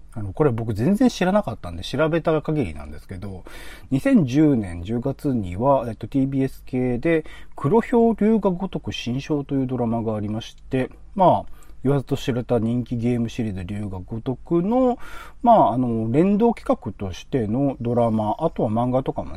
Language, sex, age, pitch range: Japanese, male, 40-59, 95-135 Hz